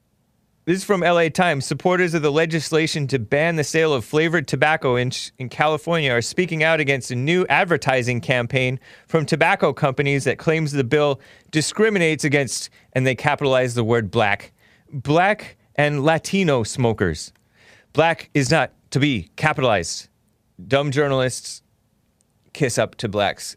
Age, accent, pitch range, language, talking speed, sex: 30-49, American, 110-150 Hz, English, 145 wpm, male